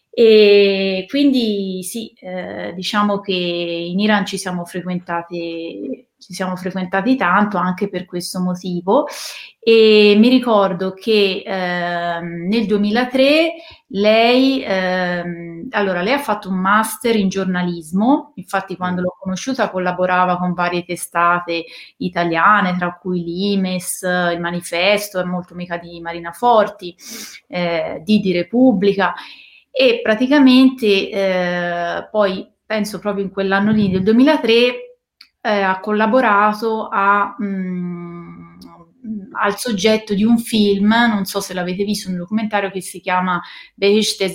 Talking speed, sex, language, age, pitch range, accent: 120 wpm, female, Italian, 30-49, 180-215 Hz, native